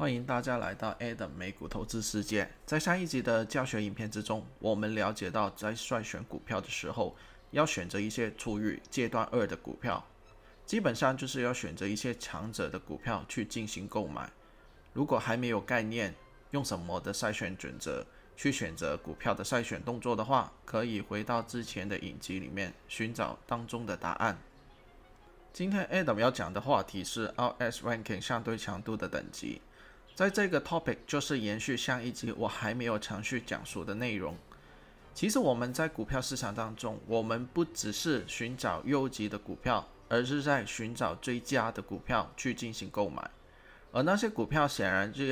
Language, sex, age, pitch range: Chinese, male, 20-39, 105-130 Hz